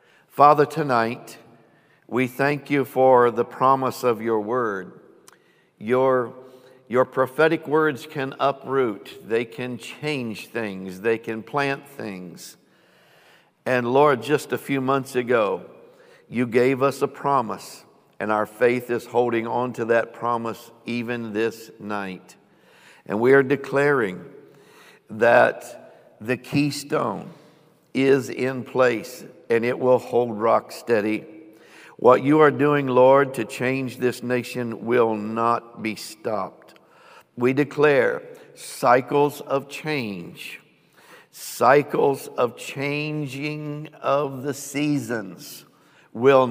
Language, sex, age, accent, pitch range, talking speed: English, male, 60-79, American, 120-145 Hz, 115 wpm